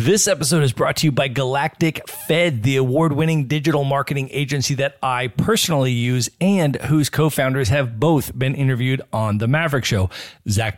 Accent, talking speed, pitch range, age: American, 165 wpm, 115-150 Hz, 40-59